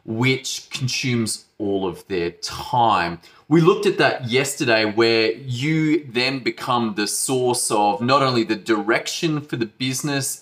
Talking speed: 145 wpm